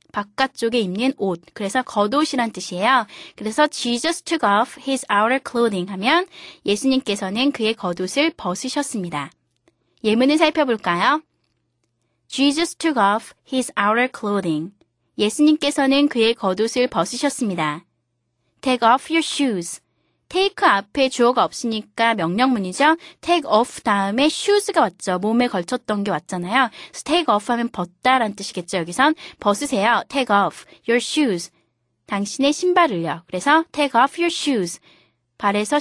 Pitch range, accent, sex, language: 205-295 Hz, native, female, Korean